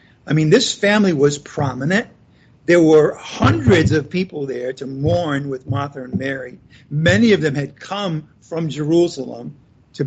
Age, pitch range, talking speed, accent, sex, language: 50-69, 140-185 Hz, 155 wpm, American, male, English